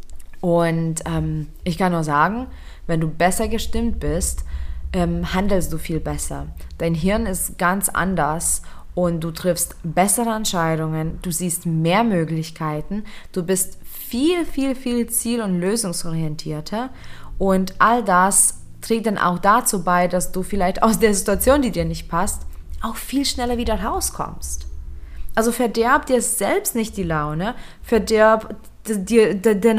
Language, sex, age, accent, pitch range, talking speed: German, female, 20-39, German, 165-225 Hz, 150 wpm